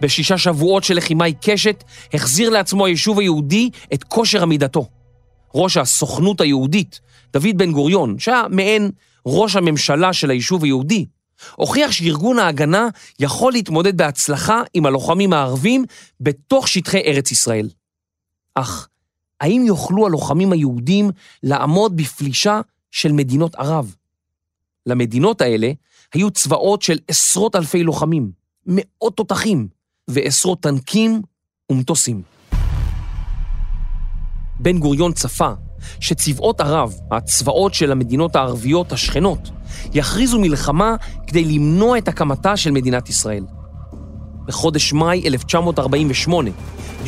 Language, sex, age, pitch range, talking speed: Hebrew, male, 30-49, 125-195 Hz, 105 wpm